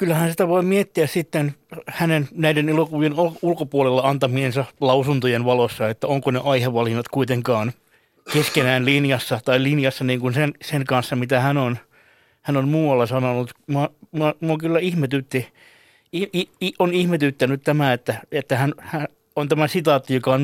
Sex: male